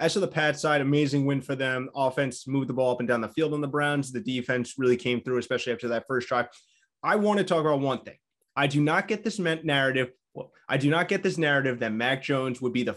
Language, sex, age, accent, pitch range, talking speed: English, male, 20-39, American, 130-170 Hz, 270 wpm